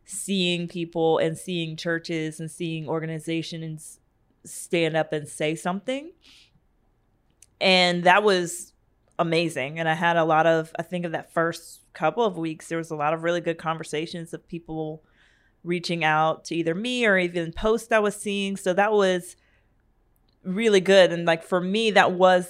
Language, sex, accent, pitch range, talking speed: English, female, American, 160-185 Hz, 170 wpm